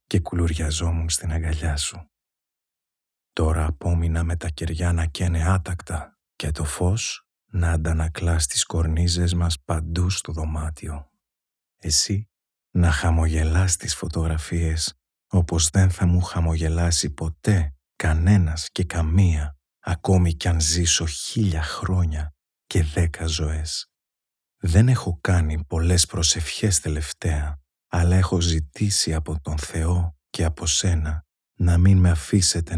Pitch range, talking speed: 80-90 Hz, 120 wpm